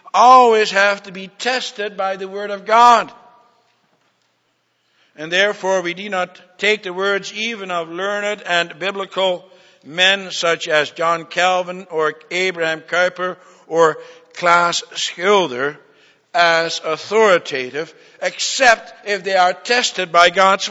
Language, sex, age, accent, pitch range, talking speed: English, male, 60-79, American, 155-195 Hz, 125 wpm